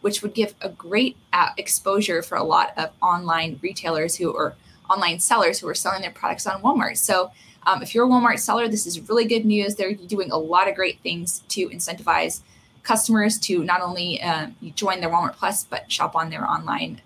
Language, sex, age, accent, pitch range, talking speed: English, female, 20-39, American, 180-235 Hz, 210 wpm